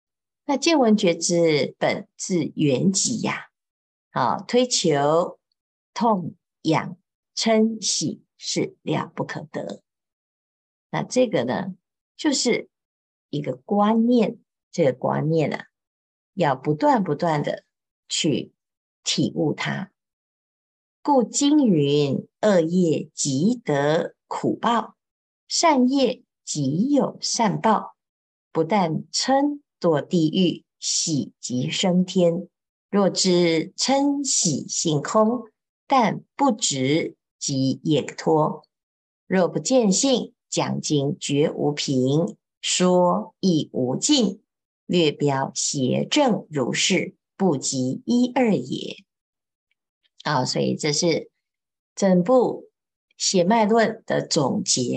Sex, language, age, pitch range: female, Chinese, 50-69, 155-235 Hz